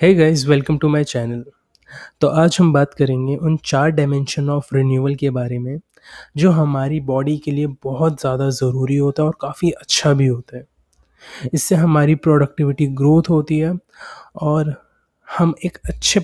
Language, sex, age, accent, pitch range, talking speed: Hindi, male, 20-39, native, 140-165 Hz, 165 wpm